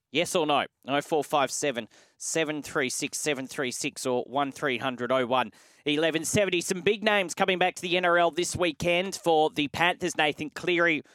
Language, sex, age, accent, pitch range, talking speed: English, male, 30-49, Australian, 135-170 Hz, 165 wpm